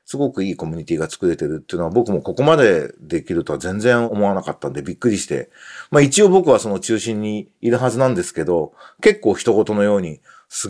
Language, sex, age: Japanese, male, 40-59